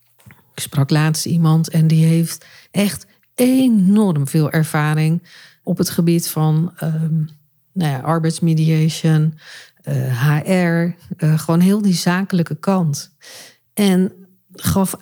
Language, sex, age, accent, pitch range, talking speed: Dutch, female, 50-69, Dutch, 160-205 Hz, 110 wpm